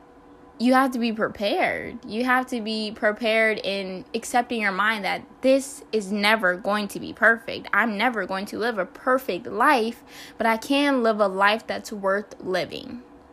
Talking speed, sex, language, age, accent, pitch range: 175 wpm, female, English, 10-29, American, 210-260 Hz